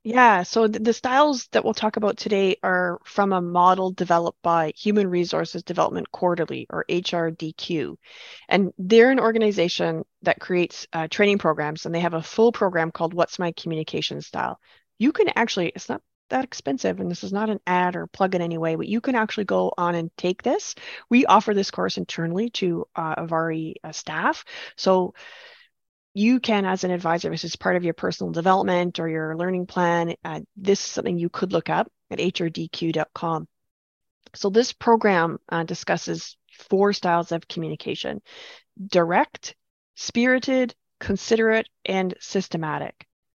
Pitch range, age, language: 165-215 Hz, 30-49, English